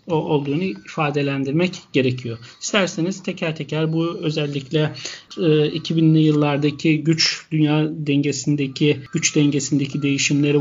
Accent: native